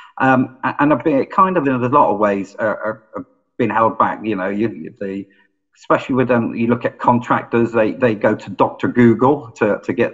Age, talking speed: 50-69, 215 wpm